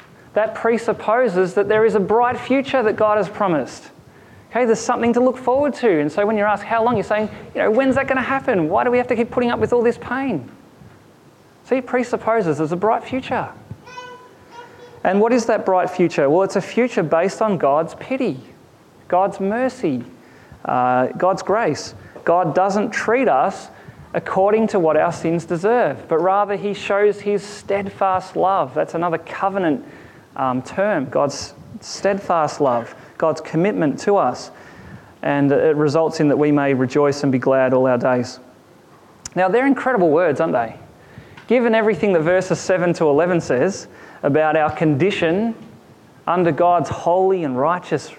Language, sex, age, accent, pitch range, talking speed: English, male, 30-49, Australian, 165-230 Hz, 170 wpm